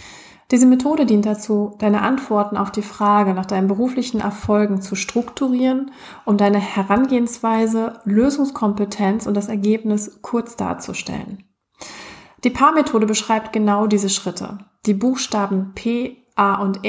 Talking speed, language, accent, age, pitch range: 125 wpm, German, German, 30-49, 195-225 Hz